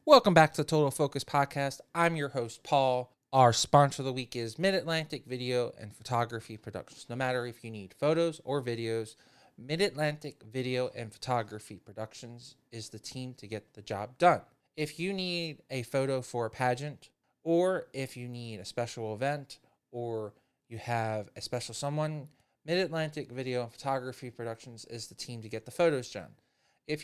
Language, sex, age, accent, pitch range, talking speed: English, male, 20-39, American, 115-150 Hz, 180 wpm